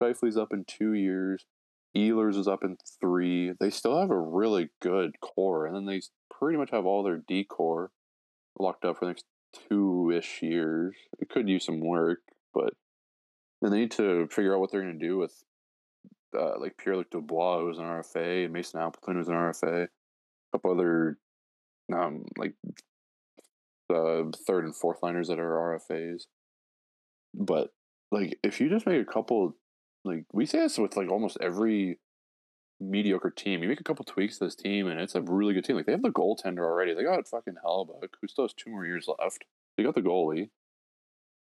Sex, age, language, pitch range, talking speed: male, 20-39, English, 80-105 Hz, 190 wpm